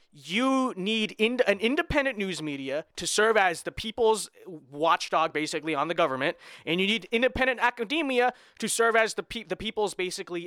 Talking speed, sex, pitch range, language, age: 160 wpm, male, 165-225 Hz, English, 20-39